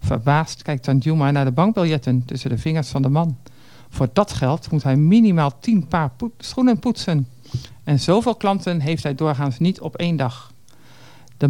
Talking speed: 170 wpm